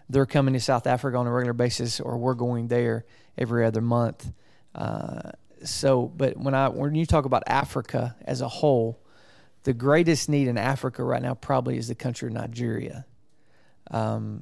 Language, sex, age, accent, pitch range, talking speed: English, male, 40-59, American, 120-140 Hz, 180 wpm